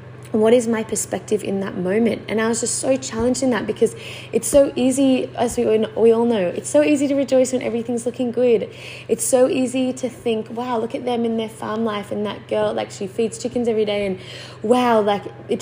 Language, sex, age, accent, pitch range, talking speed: English, female, 20-39, Australian, 195-245 Hz, 225 wpm